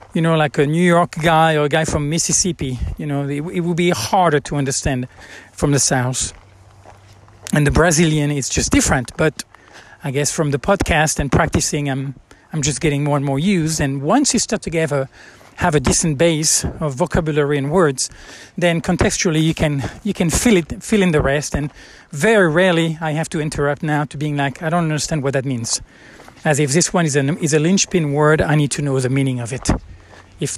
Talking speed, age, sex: 210 wpm, 40-59, male